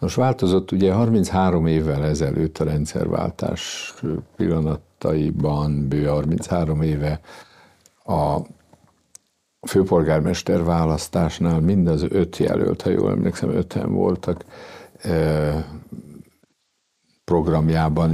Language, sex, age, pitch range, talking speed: Hungarian, male, 60-79, 80-85 Hz, 80 wpm